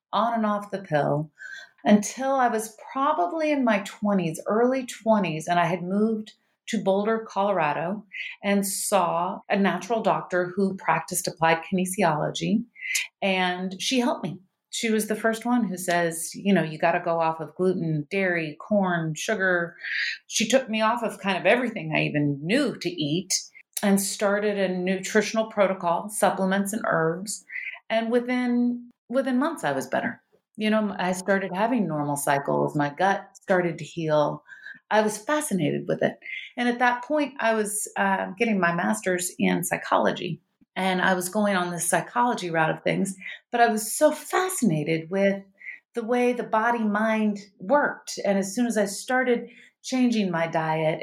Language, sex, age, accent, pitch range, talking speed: English, female, 40-59, American, 180-230 Hz, 165 wpm